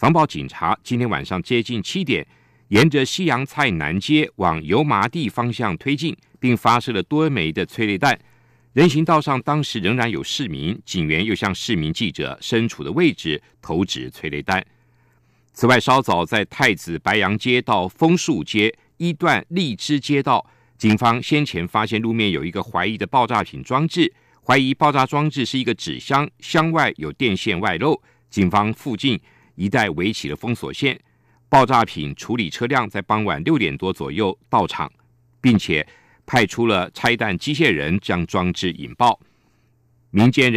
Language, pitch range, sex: German, 95-140 Hz, male